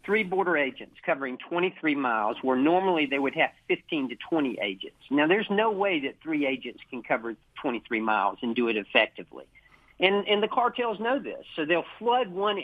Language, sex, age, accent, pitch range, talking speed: English, male, 50-69, American, 130-175 Hz, 190 wpm